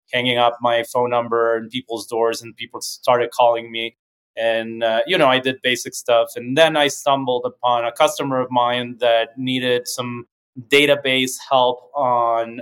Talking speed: 170 wpm